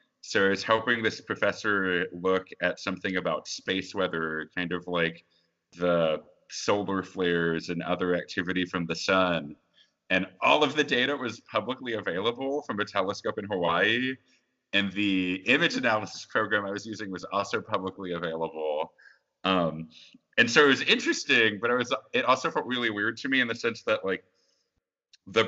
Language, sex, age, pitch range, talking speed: English, male, 30-49, 90-120 Hz, 165 wpm